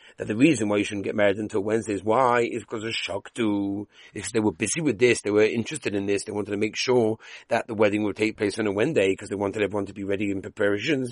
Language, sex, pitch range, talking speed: English, male, 105-140 Hz, 270 wpm